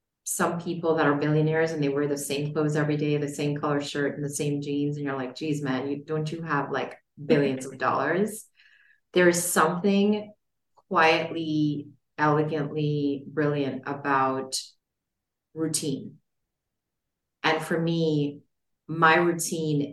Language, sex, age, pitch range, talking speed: English, female, 30-49, 145-160 Hz, 140 wpm